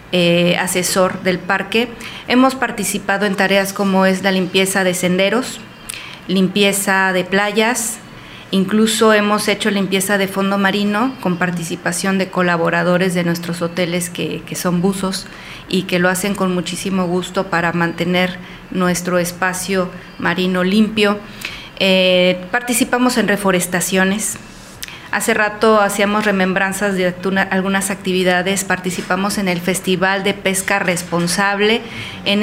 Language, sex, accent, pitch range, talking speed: Spanish, female, Mexican, 180-210 Hz, 125 wpm